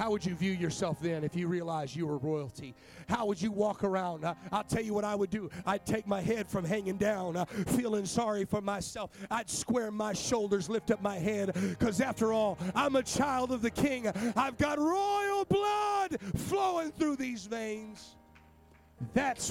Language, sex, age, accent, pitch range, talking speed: English, male, 40-59, American, 190-230 Hz, 190 wpm